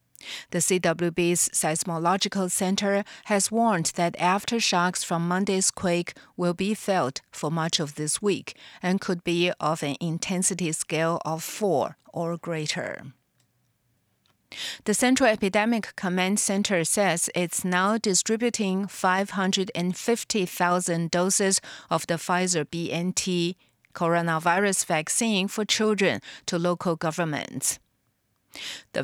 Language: English